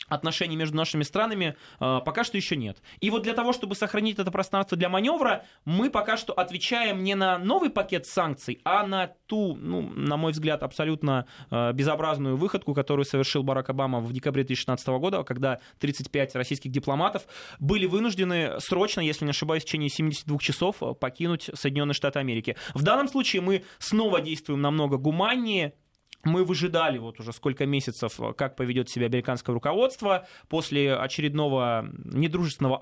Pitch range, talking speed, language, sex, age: 130-185 Hz, 155 wpm, Russian, male, 20-39